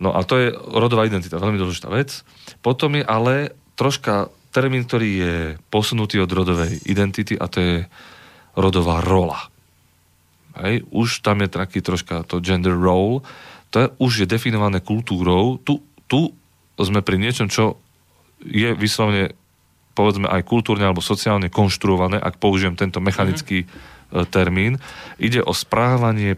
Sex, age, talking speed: male, 30-49, 145 wpm